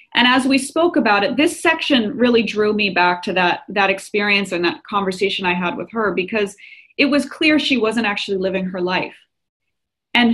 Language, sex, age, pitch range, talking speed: English, female, 30-49, 195-245 Hz, 195 wpm